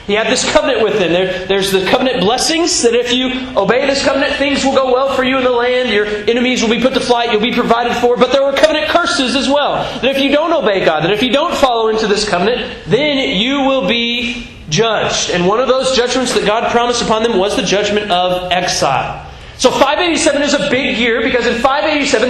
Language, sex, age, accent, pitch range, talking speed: English, male, 30-49, American, 210-260 Hz, 230 wpm